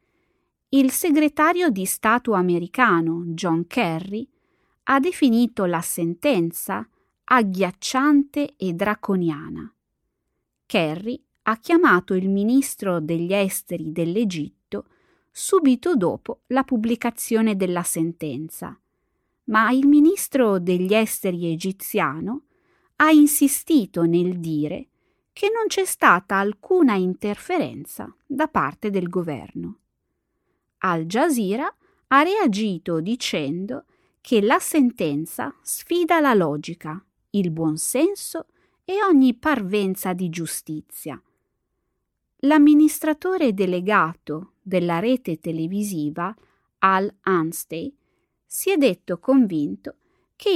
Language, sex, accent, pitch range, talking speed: Italian, female, native, 175-290 Hz, 95 wpm